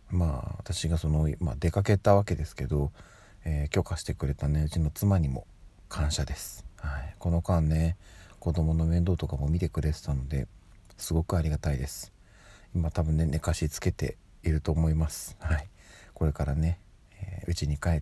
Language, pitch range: Japanese, 80-95 Hz